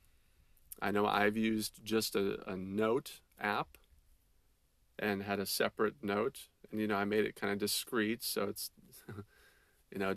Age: 40-59